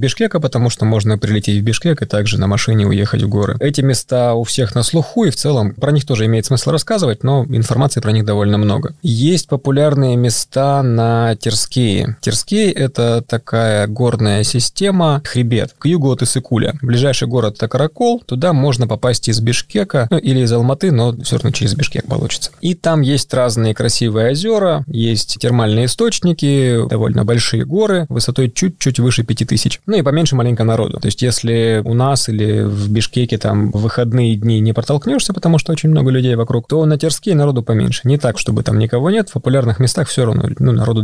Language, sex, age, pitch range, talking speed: Russian, male, 20-39, 115-145 Hz, 190 wpm